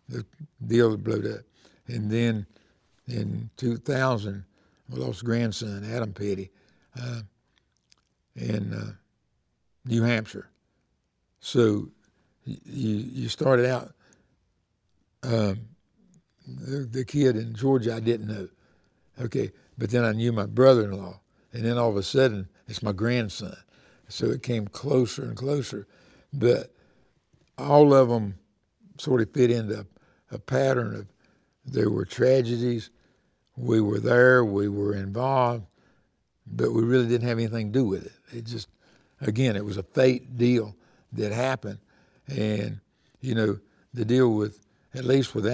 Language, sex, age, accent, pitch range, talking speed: English, male, 60-79, American, 105-125 Hz, 140 wpm